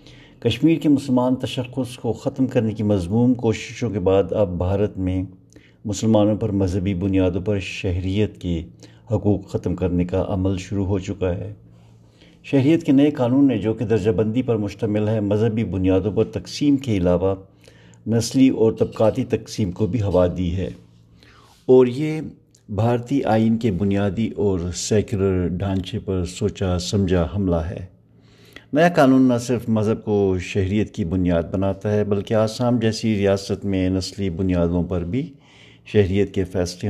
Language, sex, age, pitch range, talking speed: Urdu, male, 60-79, 95-115 Hz, 155 wpm